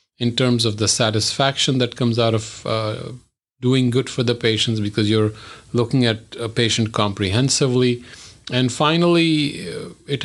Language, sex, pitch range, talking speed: English, male, 110-140 Hz, 145 wpm